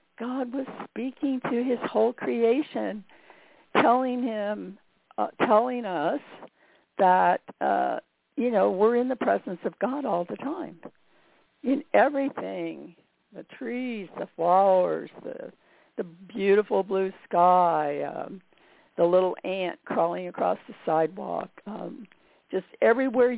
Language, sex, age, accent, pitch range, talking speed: English, female, 60-79, American, 175-260 Hz, 120 wpm